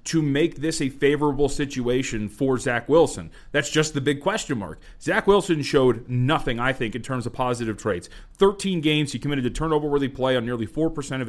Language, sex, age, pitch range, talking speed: English, male, 30-49, 125-165 Hz, 195 wpm